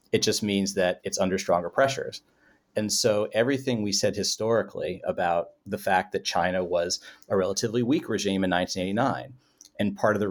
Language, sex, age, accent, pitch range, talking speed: English, male, 30-49, American, 95-120 Hz, 175 wpm